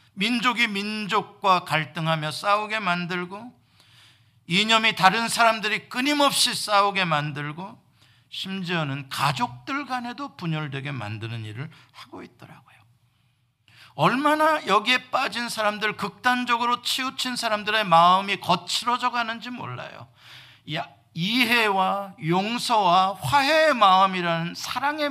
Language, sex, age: Korean, male, 50-69